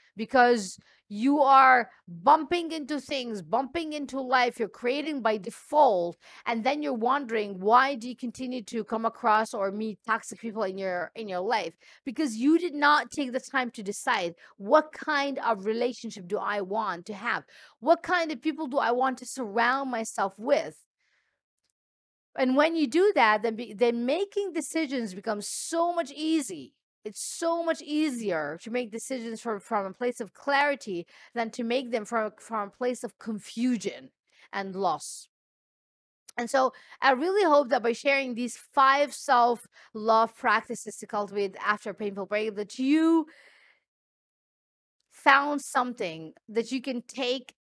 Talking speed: 160 wpm